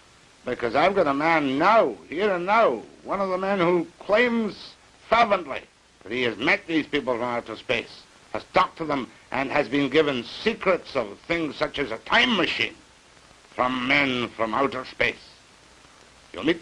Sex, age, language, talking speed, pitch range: male, 70-89, English, 175 wpm, 115-165 Hz